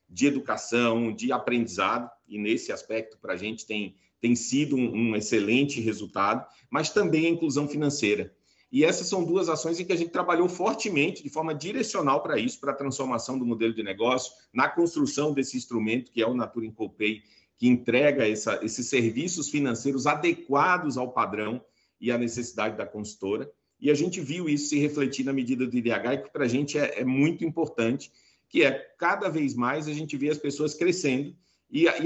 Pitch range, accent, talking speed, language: 120-160 Hz, Brazilian, 185 wpm, Portuguese